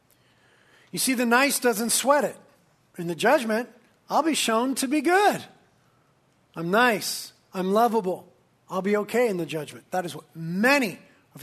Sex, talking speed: male, 165 wpm